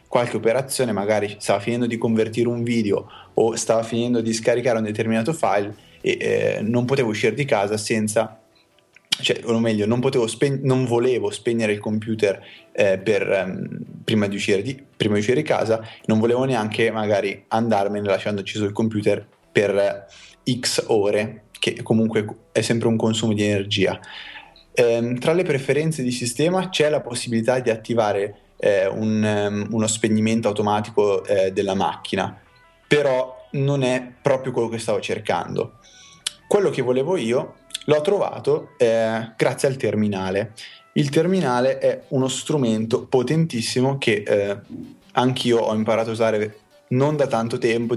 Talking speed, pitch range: 145 wpm, 105-130 Hz